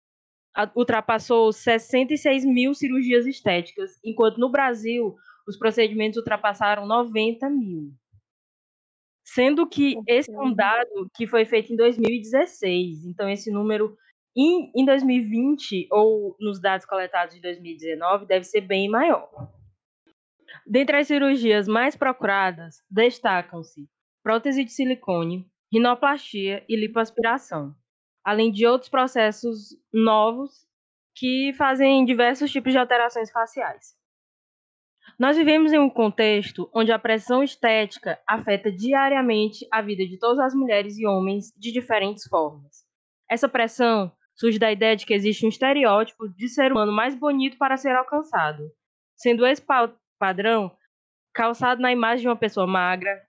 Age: 20-39